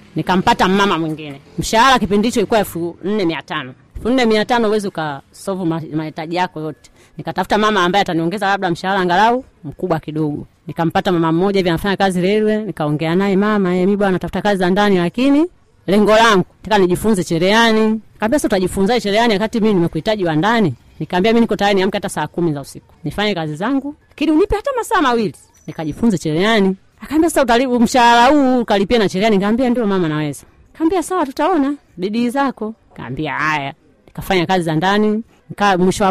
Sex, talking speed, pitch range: female, 160 wpm, 165-225 Hz